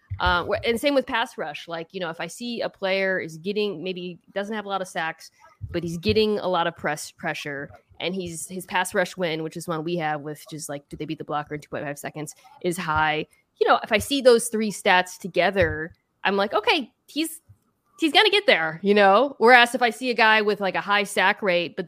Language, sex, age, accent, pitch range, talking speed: English, female, 20-39, American, 170-220 Hz, 240 wpm